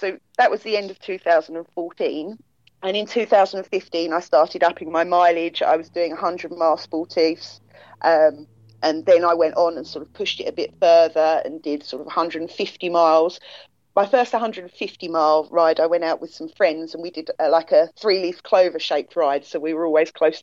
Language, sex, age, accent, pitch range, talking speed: English, female, 30-49, British, 160-190 Hz, 205 wpm